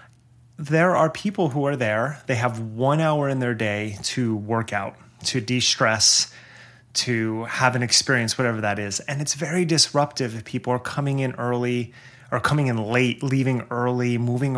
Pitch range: 120-150 Hz